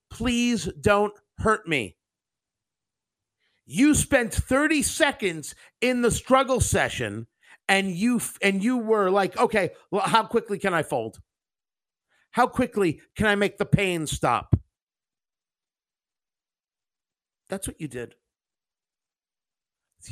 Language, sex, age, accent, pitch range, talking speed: English, male, 50-69, American, 170-240 Hz, 115 wpm